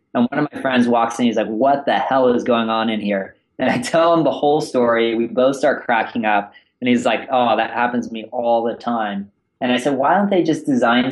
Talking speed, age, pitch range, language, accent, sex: 260 wpm, 20-39, 105-120 Hz, English, American, male